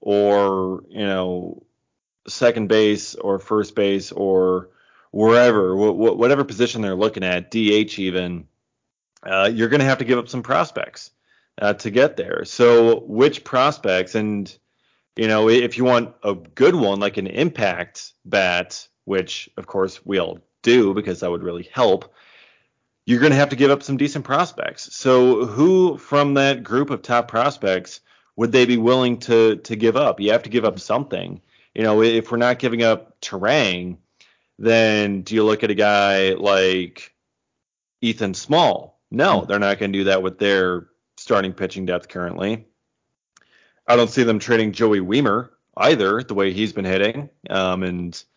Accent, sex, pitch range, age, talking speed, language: American, male, 95-120 Hz, 30-49, 165 wpm, English